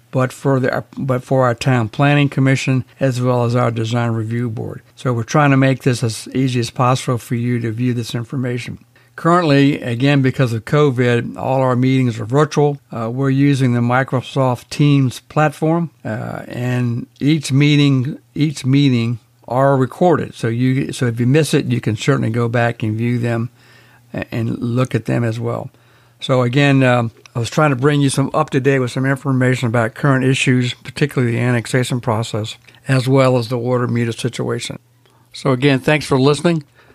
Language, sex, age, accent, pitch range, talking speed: English, male, 60-79, American, 120-135 Hz, 180 wpm